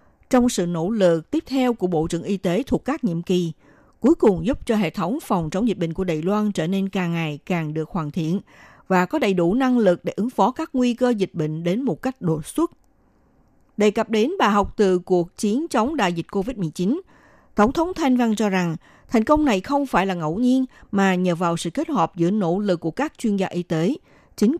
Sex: female